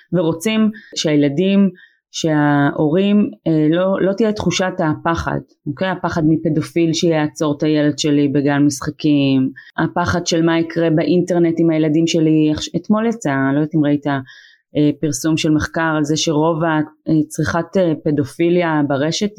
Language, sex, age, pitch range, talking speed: Hebrew, female, 20-39, 150-175 Hz, 125 wpm